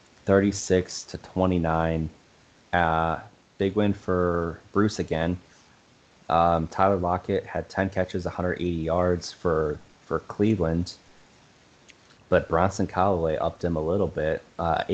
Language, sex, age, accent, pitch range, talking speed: English, male, 20-39, American, 80-95 Hz, 115 wpm